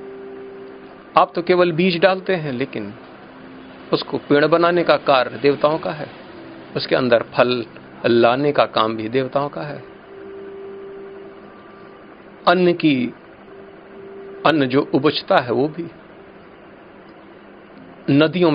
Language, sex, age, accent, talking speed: Hindi, male, 50-69, native, 110 wpm